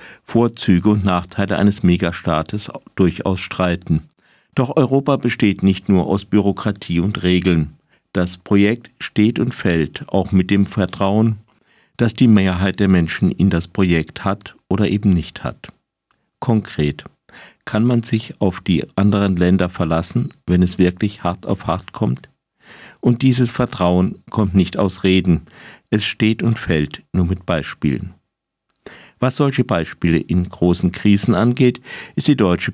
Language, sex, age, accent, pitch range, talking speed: German, male, 50-69, German, 90-110 Hz, 145 wpm